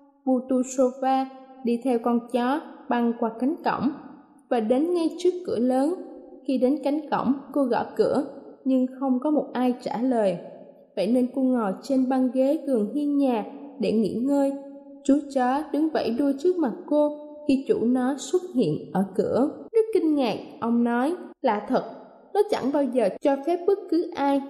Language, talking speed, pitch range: Vietnamese, 180 wpm, 245-285 Hz